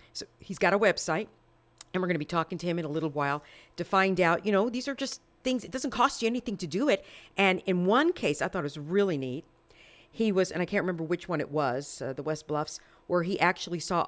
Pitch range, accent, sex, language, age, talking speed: 155-195 Hz, American, female, English, 50-69, 265 wpm